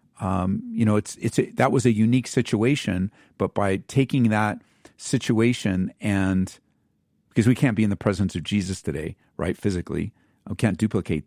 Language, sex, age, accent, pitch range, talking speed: English, male, 50-69, American, 110-145 Hz, 165 wpm